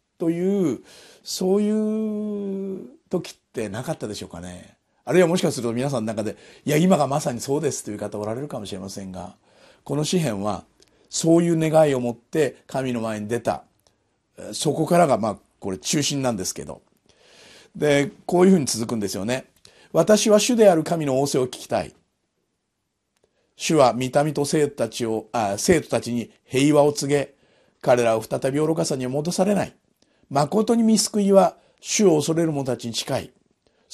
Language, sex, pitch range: Japanese, male, 115-175 Hz